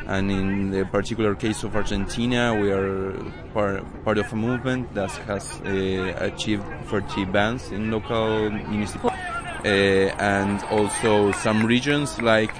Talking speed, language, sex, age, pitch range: 140 wpm, English, male, 20-39, 95-110 Hz